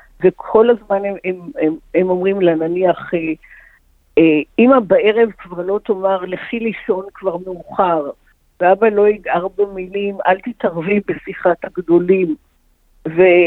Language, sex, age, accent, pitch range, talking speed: Hebrew, female, 50-69, Indian, 175-220 Hz, 120 wpm